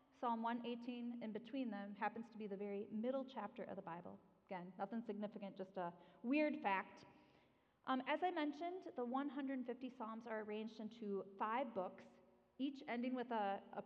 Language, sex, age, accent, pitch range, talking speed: English, female, 30-49, American, 210-270 Hz, 170 wpm